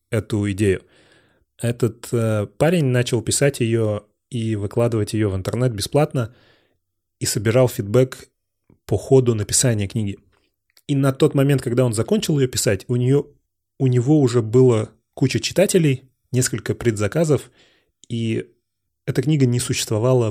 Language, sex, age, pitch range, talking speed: Russian, male, 30-49, 105-130 Hz, 130 wpm